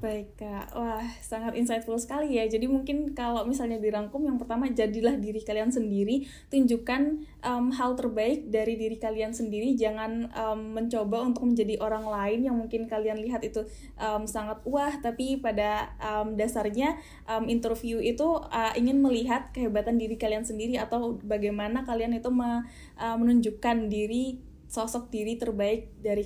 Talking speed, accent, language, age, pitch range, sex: 150 wpm, native, Indonesian, 10-29, 220-245 Hz, female